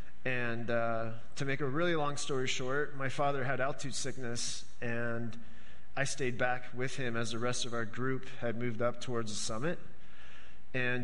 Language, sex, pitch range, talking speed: English, male, 115-135 Hz, 180 wpm